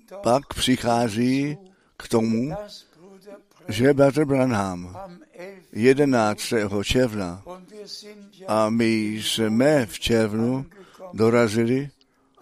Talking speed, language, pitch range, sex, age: 70 wpm, Czech, 115-180 Hz, male, 60-79